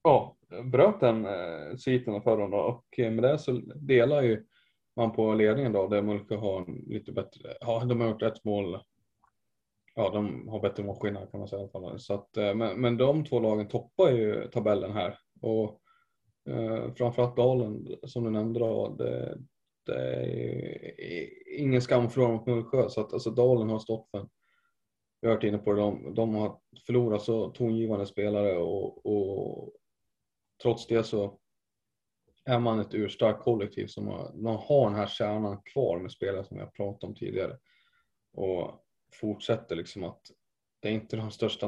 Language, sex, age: Swedish, male, 20-39